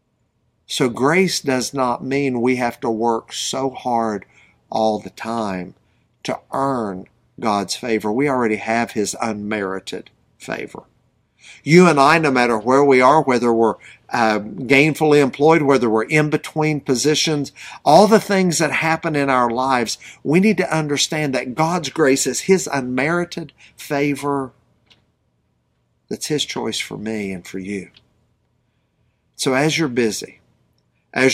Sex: male